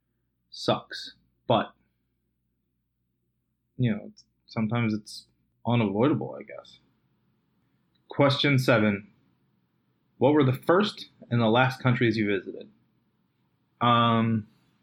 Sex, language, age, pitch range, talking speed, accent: male, English, 20-39, 105-130 Hz, 90 wpm, American